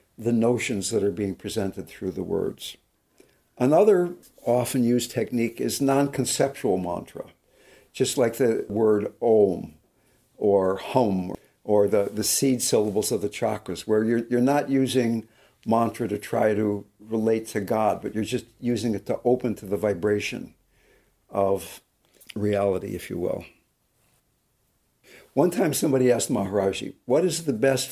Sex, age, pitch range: male, 60-79, 105-125 Hz